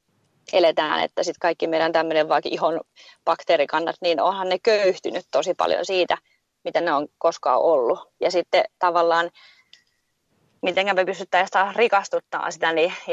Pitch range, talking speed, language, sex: 165-190 Hz, 135 wpm, Finnish, female